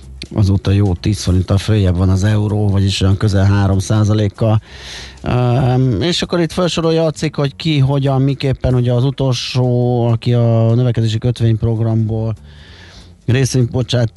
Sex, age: male, 30-49